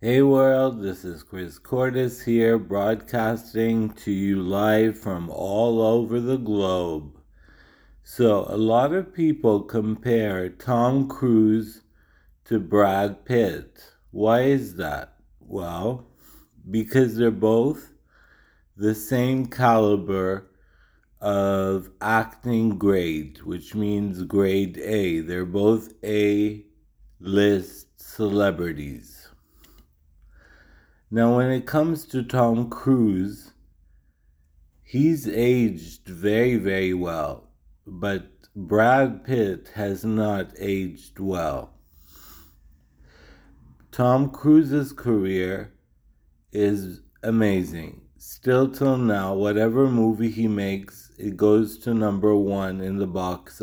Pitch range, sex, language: 90-115 Hz, male, English